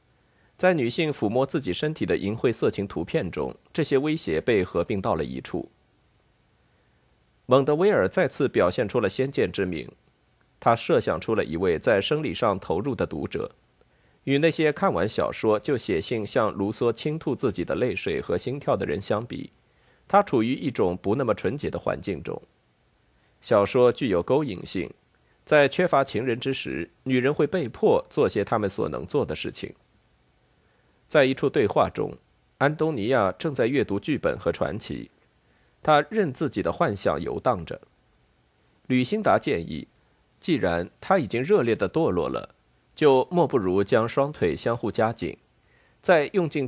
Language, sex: Chinese, male